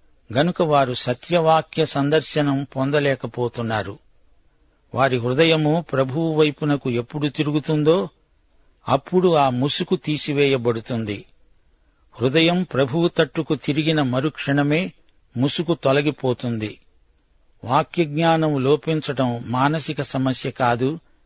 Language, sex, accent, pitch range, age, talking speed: Telugu, male, native, 120-155 Hz, 60-79, 80 wpm